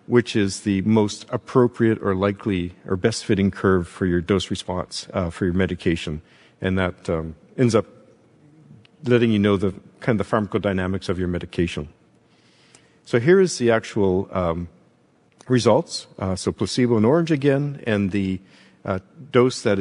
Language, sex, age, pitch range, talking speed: English, male, 50-69, 95-120 Hz, 160 wpm